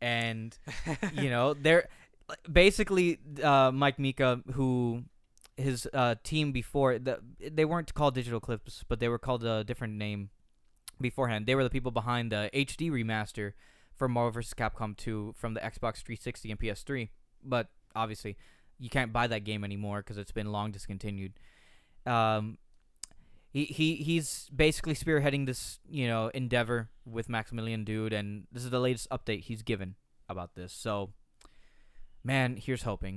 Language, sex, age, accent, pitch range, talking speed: English, male, 20-39, American, 105-135 Hz, 155 wpm